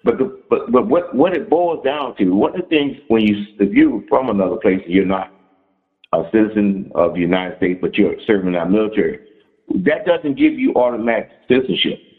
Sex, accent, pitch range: male, American, 100-155 Hz